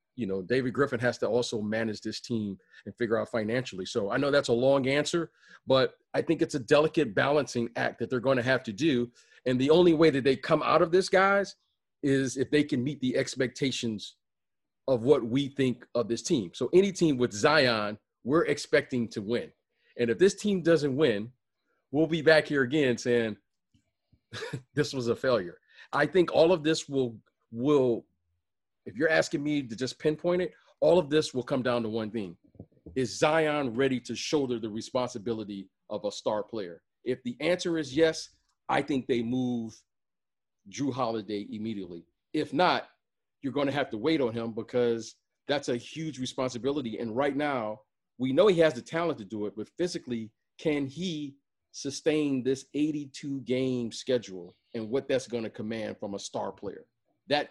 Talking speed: 185 wpm